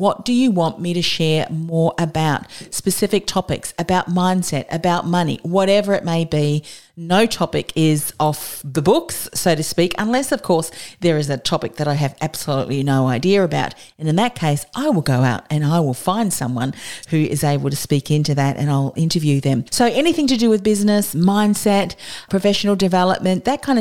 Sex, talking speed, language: female, 195 wpm, English